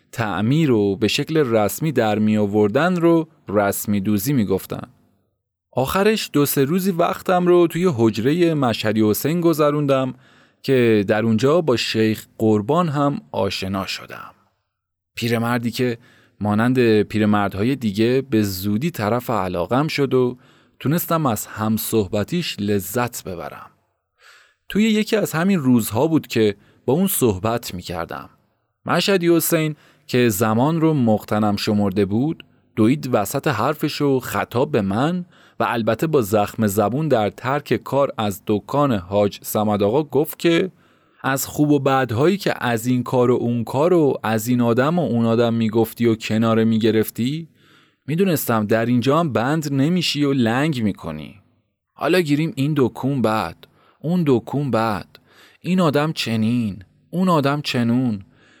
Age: 30-49